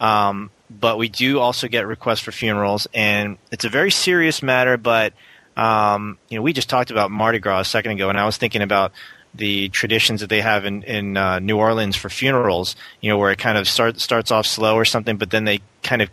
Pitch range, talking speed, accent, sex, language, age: 105-120 Hz, 235 wpm, American, male, English, 30-49